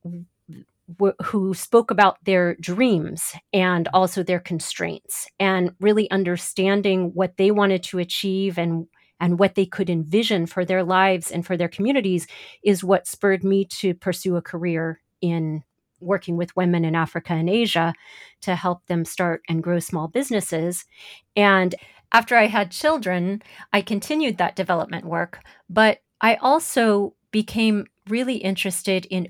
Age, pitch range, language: 40-59, 175-205 Hz, English